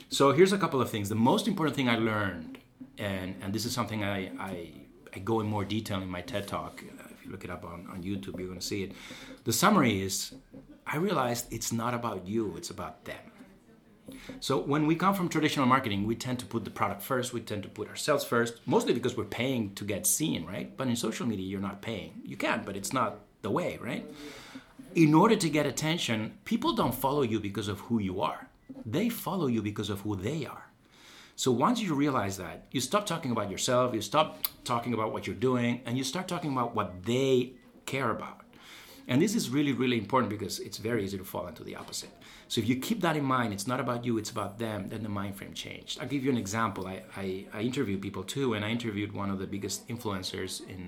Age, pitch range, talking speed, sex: 30-49, 100-130 Hz, 235 wpm, male